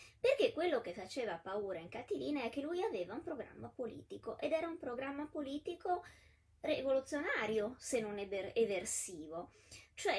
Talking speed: 140 wpm